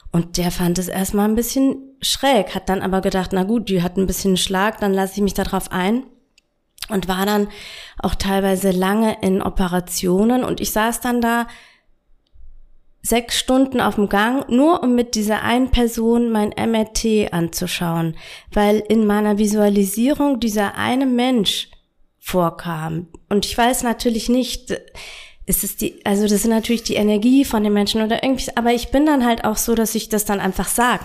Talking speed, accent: 180 wpm, German